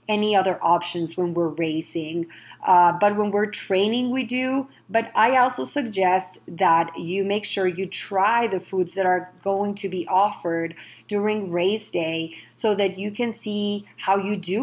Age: 30-49